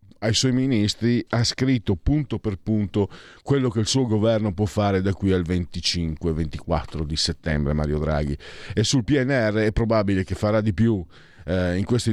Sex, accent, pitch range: male, native, 100-130 Hz